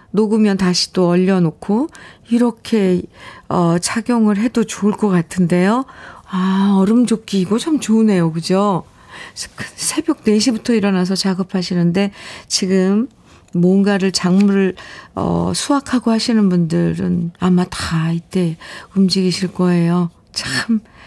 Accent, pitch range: native, 185-240 Hz